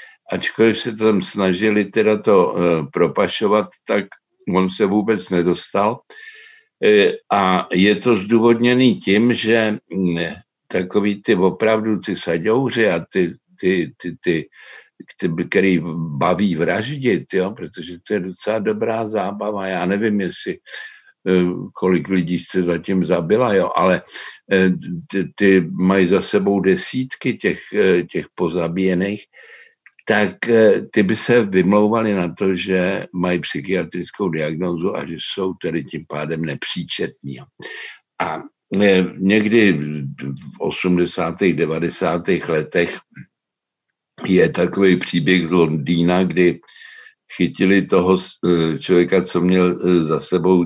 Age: 60-79